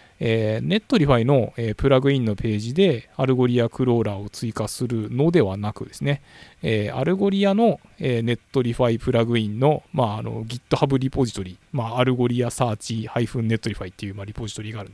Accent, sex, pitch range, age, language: native, male, 105-145 Hz, 20-39, Japanese